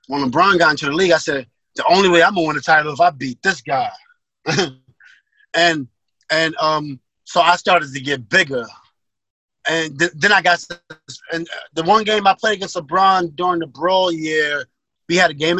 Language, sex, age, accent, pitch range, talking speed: English, male, 30-49, American, 145-180 Hz, 195 wpm